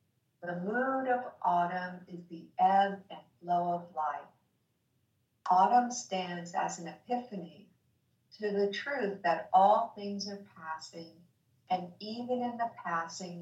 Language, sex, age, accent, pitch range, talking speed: English, female, 50-69, American, 160-200 Hz, 130 wpm